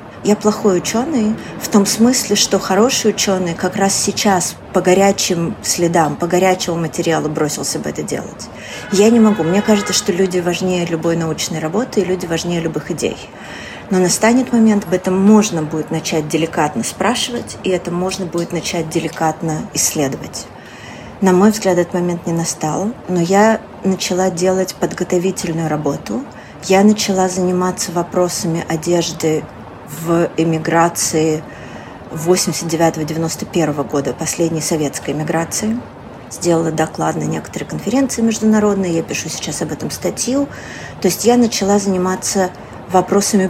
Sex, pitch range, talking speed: female, 165-205 Hz, 135 wpm